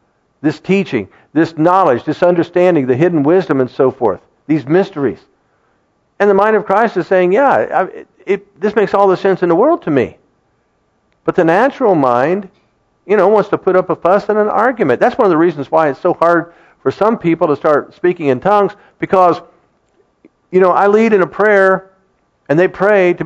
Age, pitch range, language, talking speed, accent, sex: 50-69, 155-200 Hz, English, 195 wpm, American, male